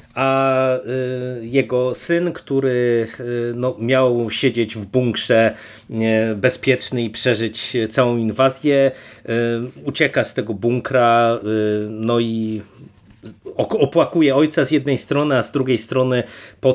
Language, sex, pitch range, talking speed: Polish, male, 115-135 Hz, 105 wpm